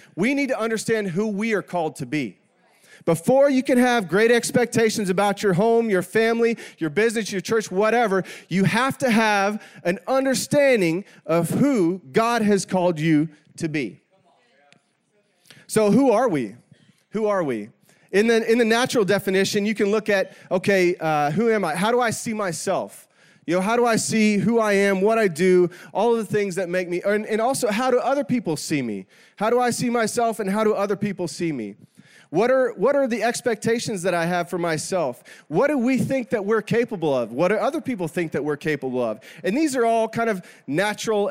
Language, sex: English, male